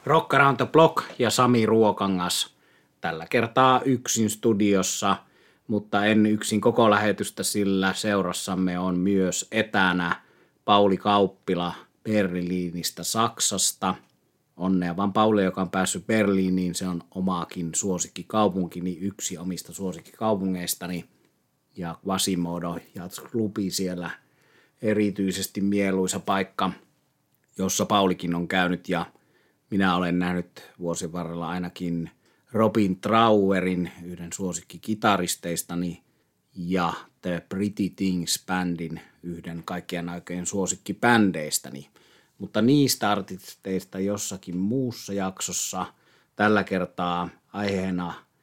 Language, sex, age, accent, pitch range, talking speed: Finnish, male, 30-49, native, 90-105 Hz, 95 wpm